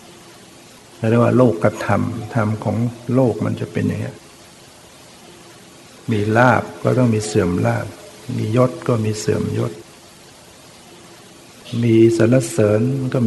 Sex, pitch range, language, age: male, 105-115 Hz, Thai, 60-79